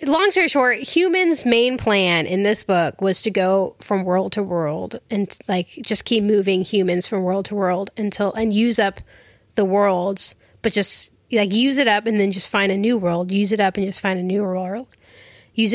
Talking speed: 210 wpm